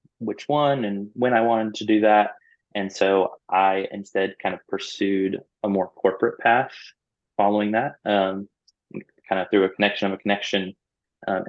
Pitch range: 95-105 Hz